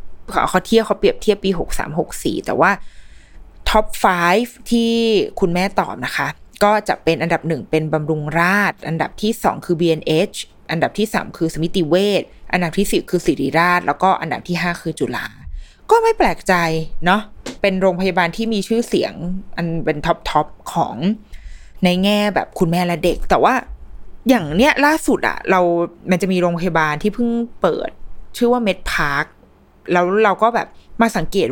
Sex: female